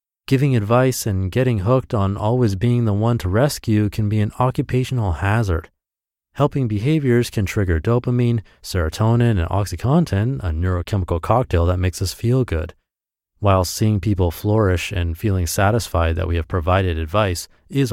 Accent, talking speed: American, 155 wpm